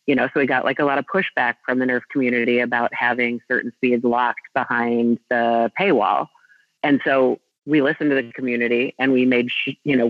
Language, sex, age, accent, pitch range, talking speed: English, female, 30-49, American, 120-135 Hz, 200 wpm